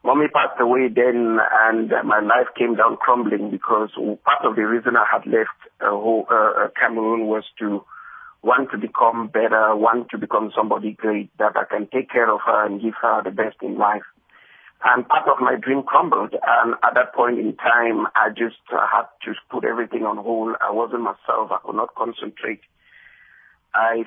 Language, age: English, 50-69